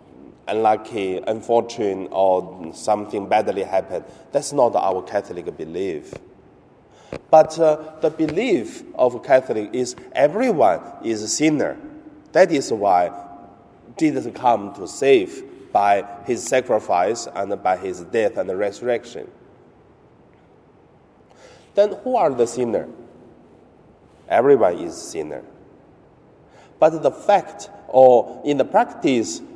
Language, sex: Chinese, male